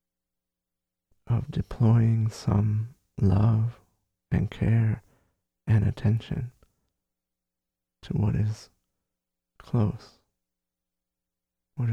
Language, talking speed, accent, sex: English, 65 wpm, American, male